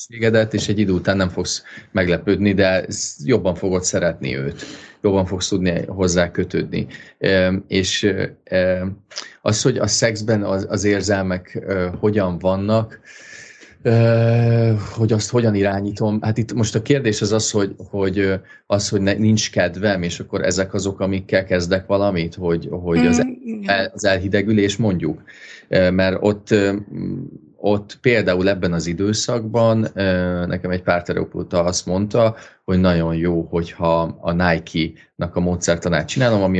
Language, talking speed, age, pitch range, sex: Hungarian, 140 wpm, 30-49, 90-110 Hz, male